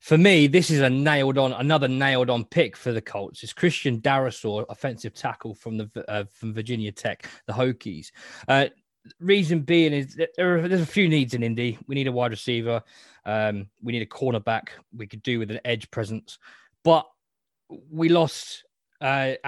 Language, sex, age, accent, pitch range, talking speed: English, male, 20-39, British, 110-135 Hz, 180 wpm